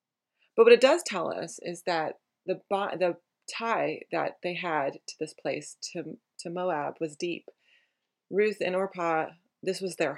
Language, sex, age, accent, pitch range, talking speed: English, female, 30-49, American, 155-190 Hz, 165 wpm